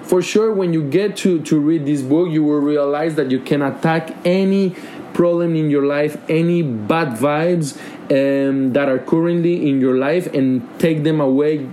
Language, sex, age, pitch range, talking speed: English, male, 20-39, 125-155 Hz, 185 wpm